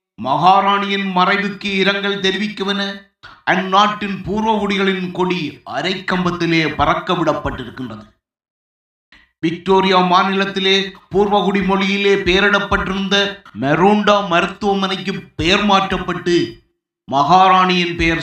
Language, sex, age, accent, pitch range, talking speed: Tamil, male, 30-49, native, 165-200 Hz, 65 wpm